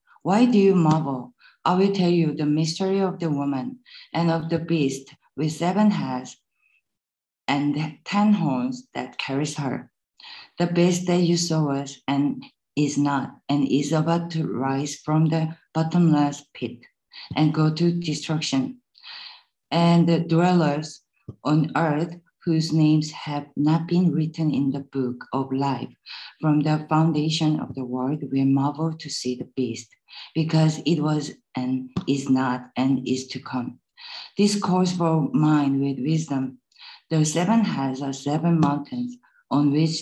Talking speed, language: 150 wpm, English